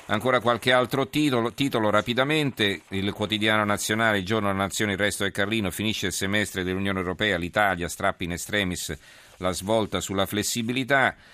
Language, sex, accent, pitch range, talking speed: Italian, male, native, 90-105 Hz, 160 wpm